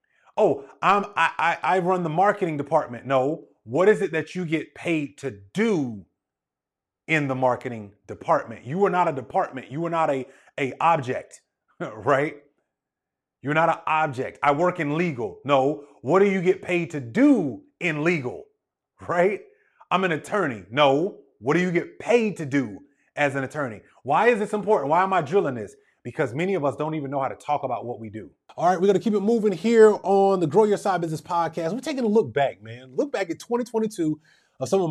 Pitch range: 130-185 Hz